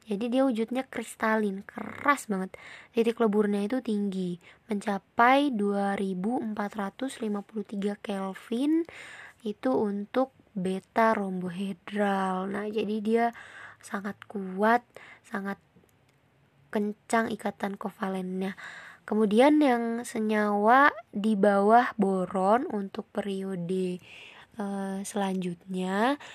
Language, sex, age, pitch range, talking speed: Indonesian, female, 20-39, 195-230 Hz, 80 wpm